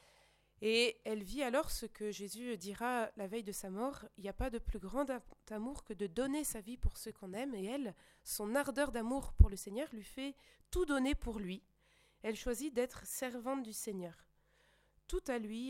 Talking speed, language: 205 wpm, French